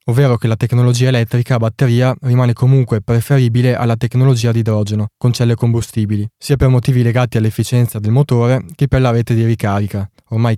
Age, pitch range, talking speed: 20-39, 110-130 Hz, 175 wpm